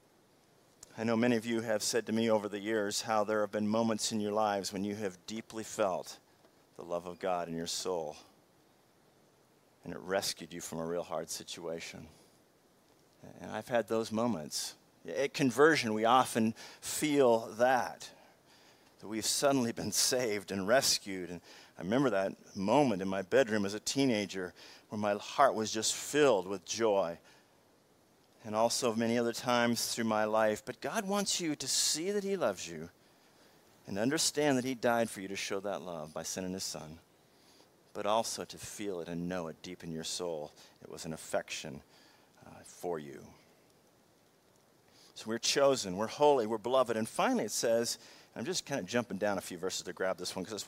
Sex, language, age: male, English, 50-69